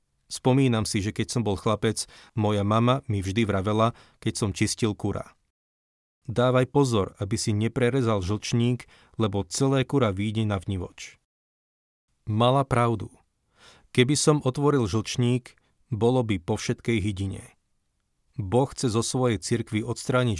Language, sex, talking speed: Slovak, male, 130 wpm